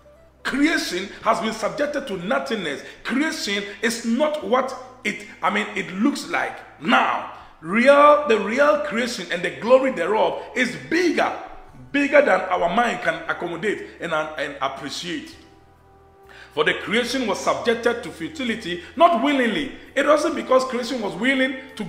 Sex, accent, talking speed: male, Nigerian, 145 wpm